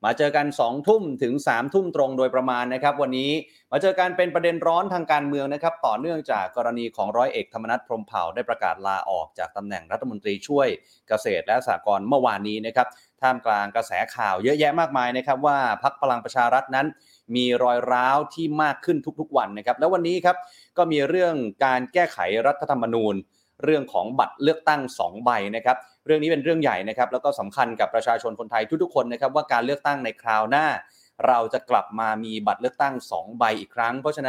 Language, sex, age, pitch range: Thai, male, 30-49, 120-160 Hz